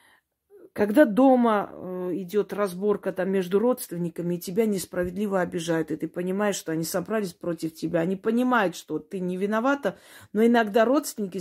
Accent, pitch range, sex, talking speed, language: native, 170-220 Hz, female, 145 wpm, Russian